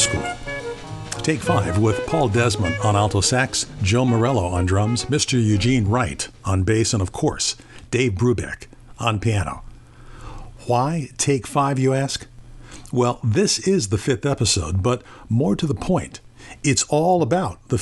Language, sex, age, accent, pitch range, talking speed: English, male, 50-69, American, 105-140 Hz, 150 wpm